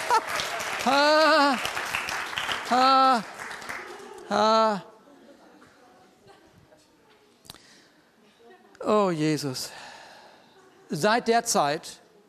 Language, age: German, 60-79